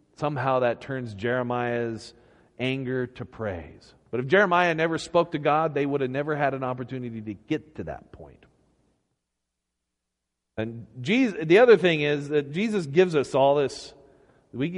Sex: male